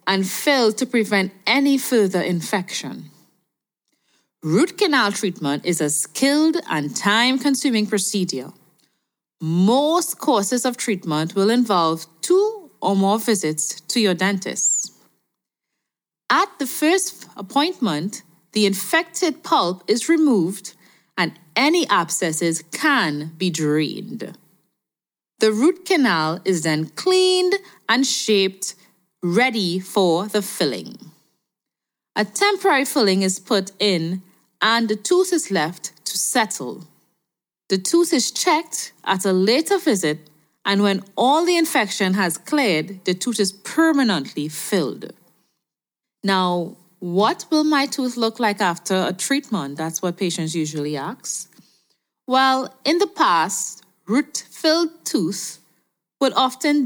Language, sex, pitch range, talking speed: English, female, 180-275 Hz, 120 wpm